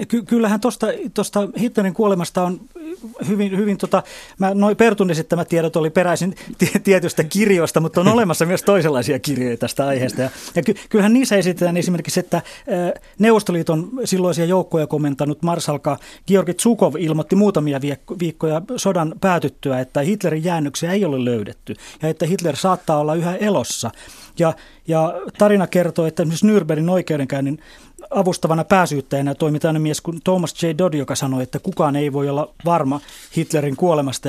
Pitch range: 150-190 Hz